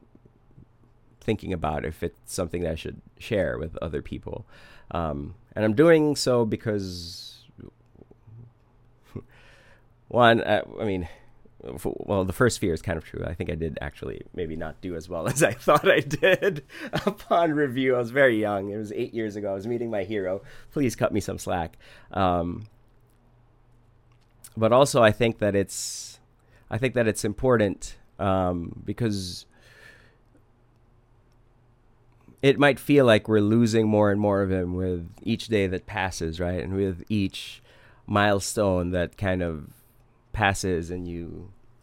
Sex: male